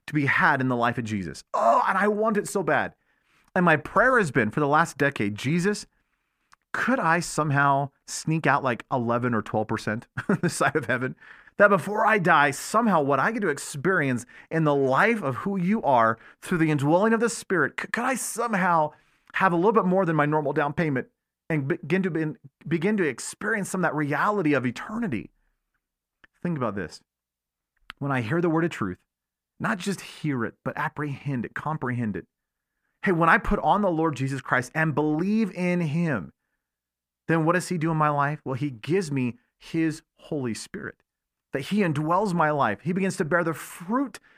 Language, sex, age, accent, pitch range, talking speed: English, male, 40-59, American, 130-190 Hz, 195 wpm